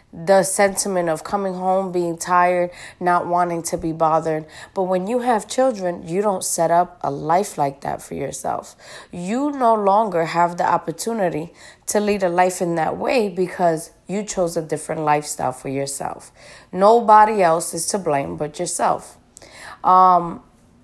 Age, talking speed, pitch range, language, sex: 20-39, 160 wpm, 165-210 Hz, English, female